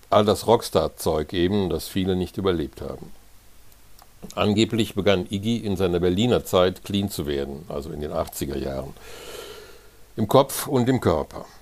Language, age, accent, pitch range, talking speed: German, 60-79, German, 90-110 Hz, 150 wpm